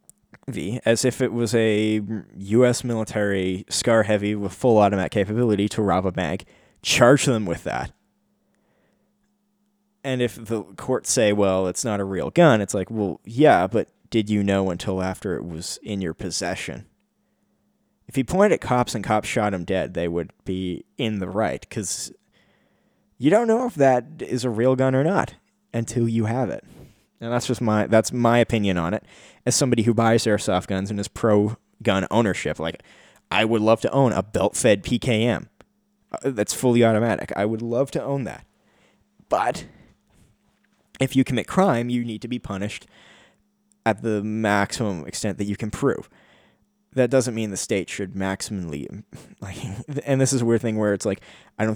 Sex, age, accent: male, 20-39, American